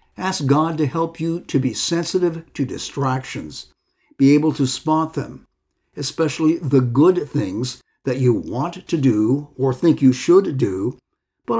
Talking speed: 155 wpm